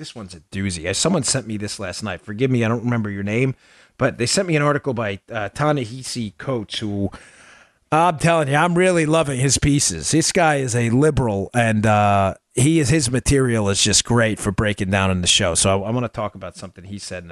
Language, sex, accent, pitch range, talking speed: English, male, American, 105-140 Hz, 230 wpm